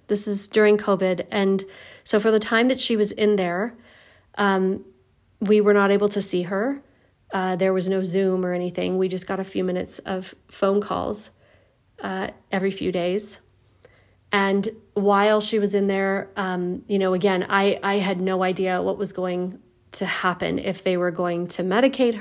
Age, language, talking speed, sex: 40-59, English, 185 wpm, female